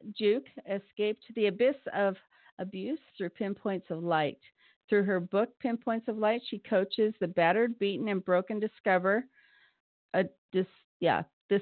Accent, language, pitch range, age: American, English, 185-225 Hz, 50-69